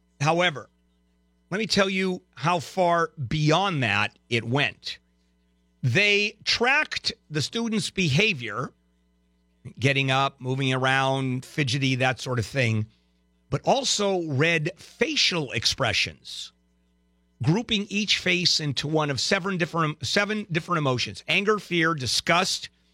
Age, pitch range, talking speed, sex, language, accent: 50-69, 105-175 Hz, 115 wpm, male, English, American